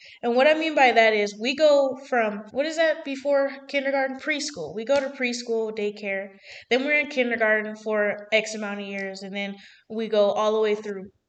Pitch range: 210-255 Hz